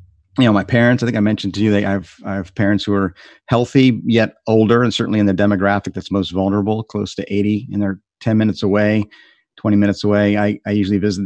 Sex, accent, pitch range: male, American, 100-115 Hz